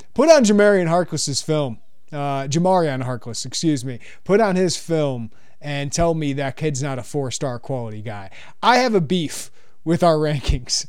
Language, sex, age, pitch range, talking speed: English, male, 30-49, 140-180 Hz, 170 wpm